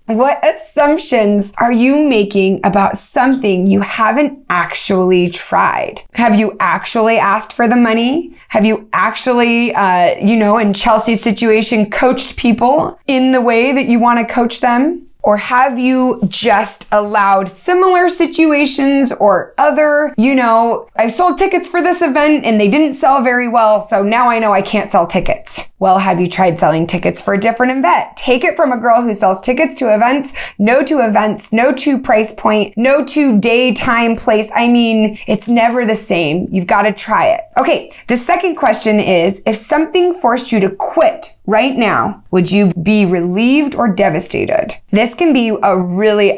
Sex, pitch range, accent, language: female, 200-265 Hz, American, English